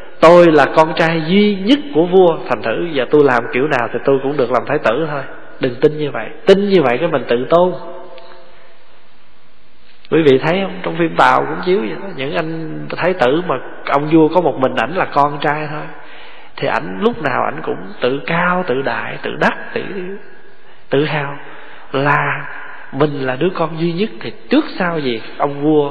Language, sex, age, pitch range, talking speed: Vietnamese, male, 20-39, 145-200 Hz, 205 wpm